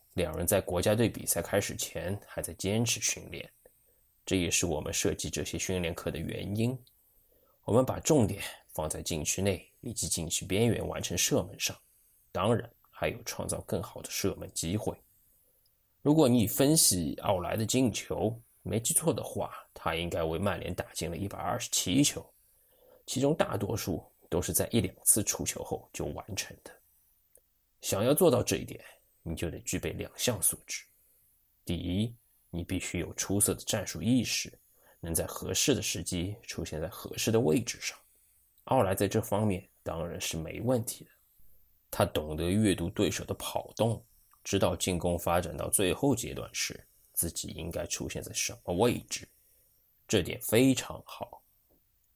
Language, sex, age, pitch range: Chinese, male, 20-39, 85-115 Hz